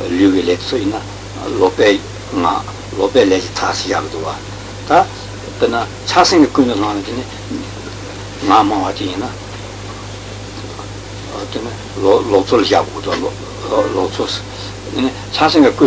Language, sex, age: Italian, male, 60-79